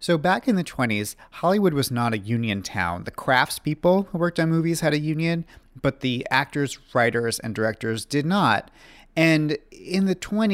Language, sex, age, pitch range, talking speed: English, male, 40-59, 110-145 Hz, 175 wpm